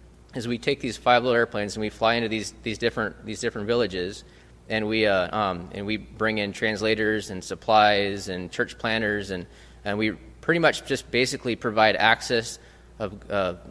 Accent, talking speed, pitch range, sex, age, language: American, 185 wpm, 95-115 Hz, male, 20-39, English